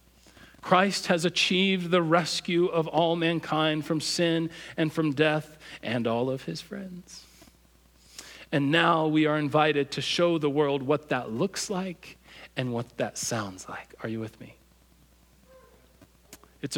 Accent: American